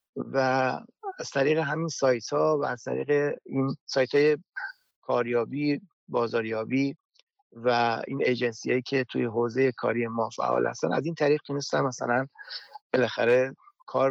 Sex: male